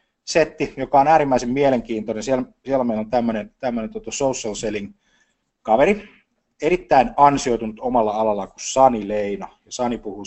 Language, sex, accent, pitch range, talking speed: Finnish, male, native, 110-160 Hz, 130 wpm